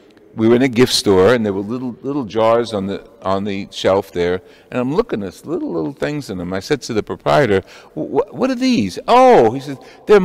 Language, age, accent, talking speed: English, 60-79, American, 235 wpm